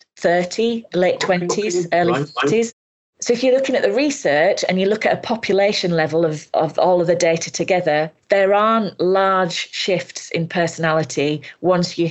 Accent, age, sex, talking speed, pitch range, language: British, 30-49, female, 170 wpm, 160-200 Hz, English